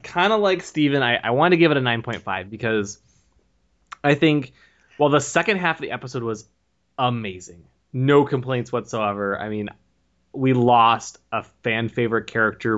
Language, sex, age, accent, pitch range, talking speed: English, male, 20-39, American, 110-145 Hz, 165 wpm